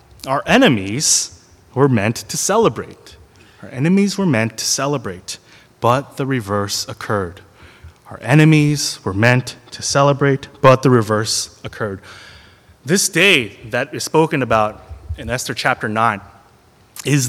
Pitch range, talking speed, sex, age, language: 115-165 Hz, 130 wpm, male, 20-39, English